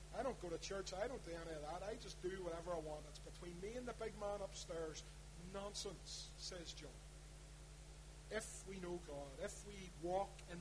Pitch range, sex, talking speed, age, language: 155-195 Hz, male, 205 wpm, 30-49, English